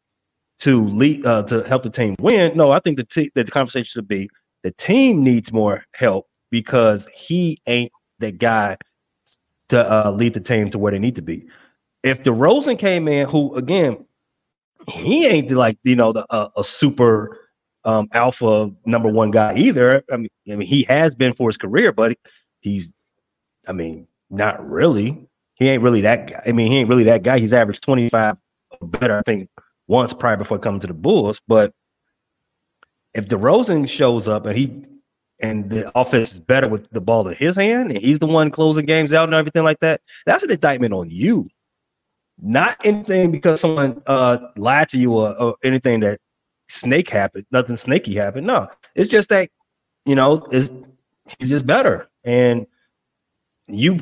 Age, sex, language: 30-49, male, English